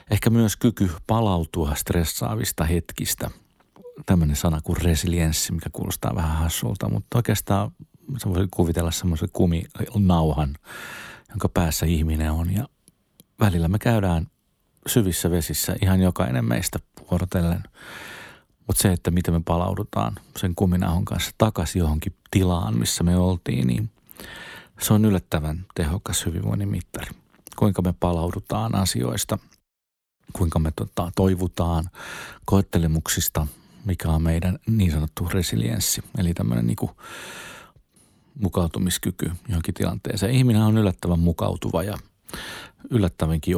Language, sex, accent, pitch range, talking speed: Finnish, male, native, 85-100 Hz, 115 wpm